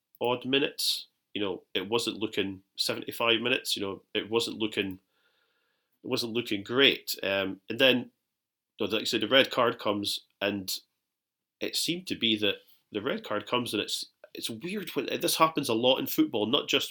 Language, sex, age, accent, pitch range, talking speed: English, male, 30-49, British, 105-135 Hz, 180 wpm